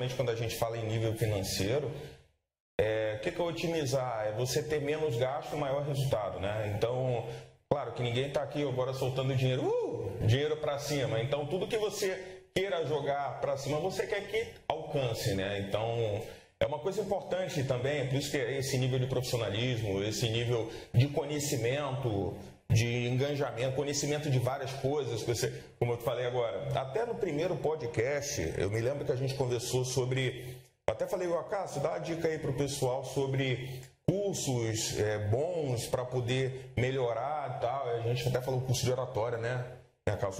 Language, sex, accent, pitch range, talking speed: Portuguese, male, Brazilian, 115-145 Hz, 180 wpm